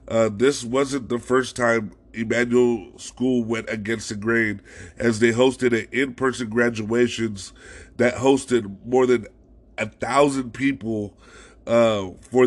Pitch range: 115-130 Hz